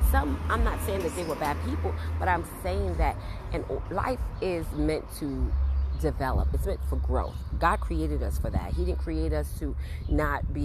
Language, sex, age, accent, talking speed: English, female, 30-49, American, 195 wpm